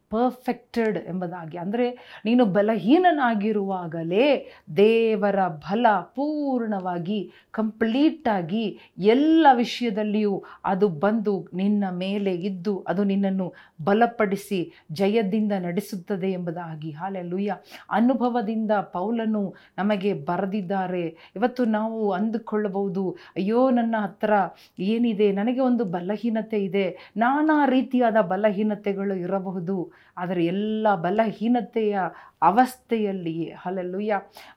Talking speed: 85 wpm